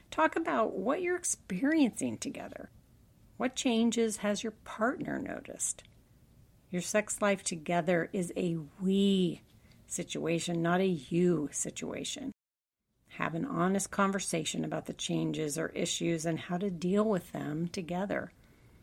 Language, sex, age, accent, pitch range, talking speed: English, female, 50-69, American, 165-210 Hz, 130 wpm